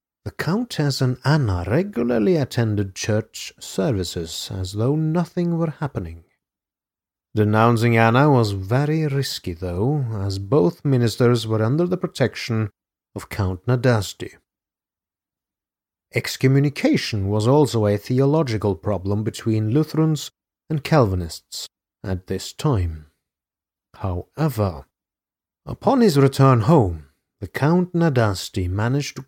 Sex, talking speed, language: male, 105 wpm, English